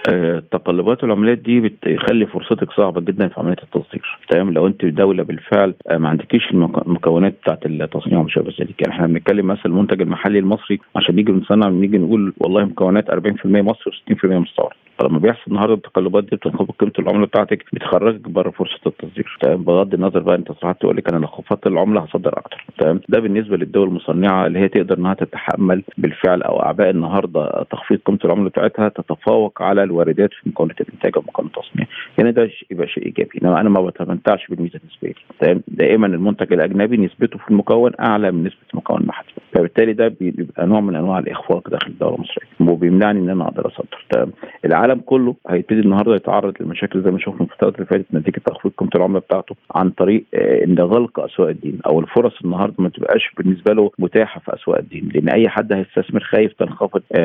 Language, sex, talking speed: Arabic, male, 185 wpm